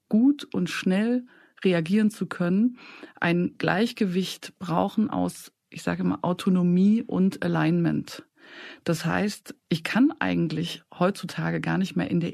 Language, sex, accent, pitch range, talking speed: German, female, German, 170-210 Hz, 130 wpm